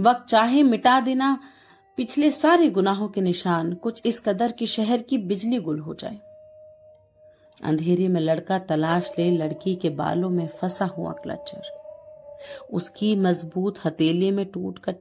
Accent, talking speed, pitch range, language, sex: native, 150 wpm, 175-245 Hz, Hindi, female